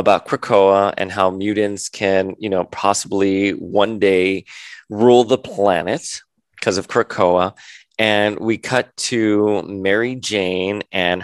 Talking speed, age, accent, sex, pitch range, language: 130 wpm, 30-49, American, male, 95-110 Hz, English